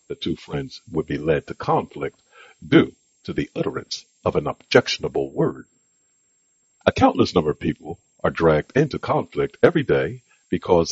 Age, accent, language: 60-79, American, English